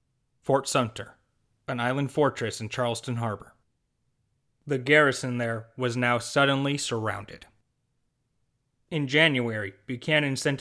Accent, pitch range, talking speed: American, 120-135 Hz, 105 wpm